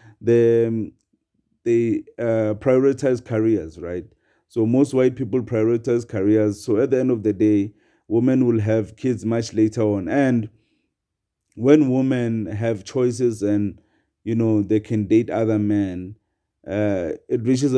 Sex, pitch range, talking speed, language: male, 105-125 Hz, 145 wpm, English